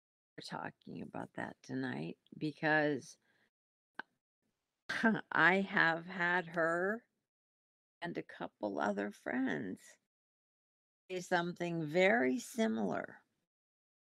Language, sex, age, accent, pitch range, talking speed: English, female, 50-69, American, 140-210 Hz, 75 wpm